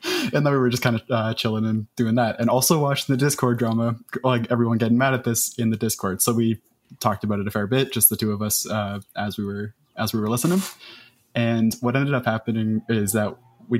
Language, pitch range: English, 105-120 Hz